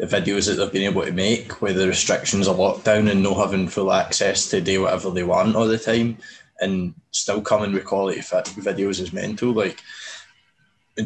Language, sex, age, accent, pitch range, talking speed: English, male, 20-39, British, 95-115 Hz, 195 wpm